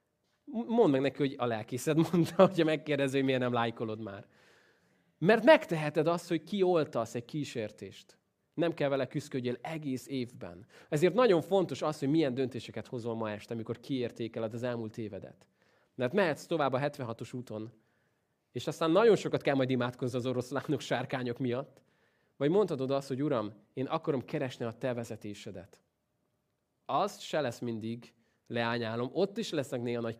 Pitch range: 115-150 Hz